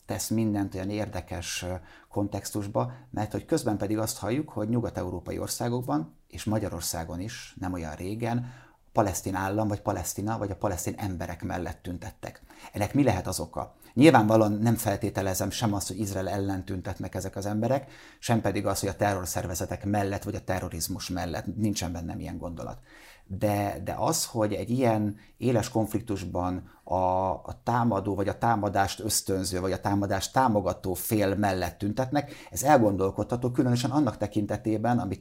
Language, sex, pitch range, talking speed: Hungarian, male, 95-110 Hz, 155 wpm